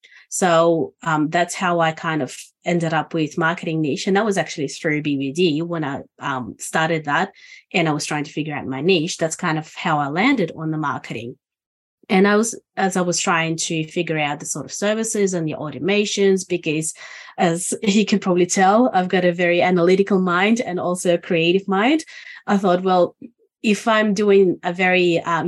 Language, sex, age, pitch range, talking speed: English, female, 30-49, 155-195 Hz, 200 wpm